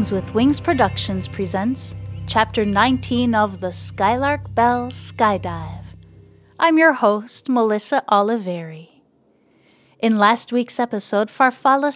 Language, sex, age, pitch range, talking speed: English, female, 30-49, 200-260 Hz, 105 wpm